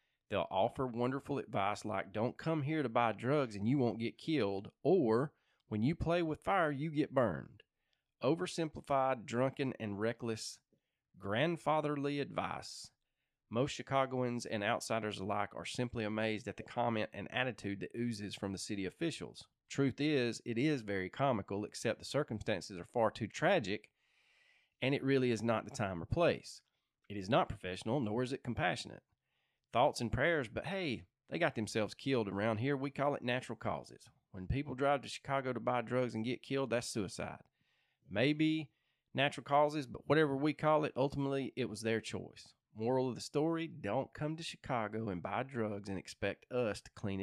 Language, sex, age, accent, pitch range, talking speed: English, male, 30-49, American, 105-140 Hz, 175 wpm